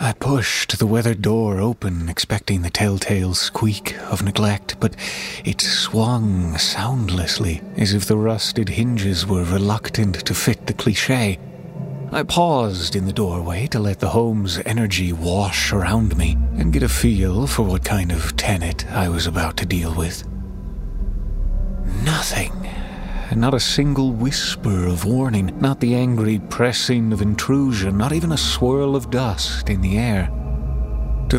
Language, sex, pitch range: English, male, 95-125 Hz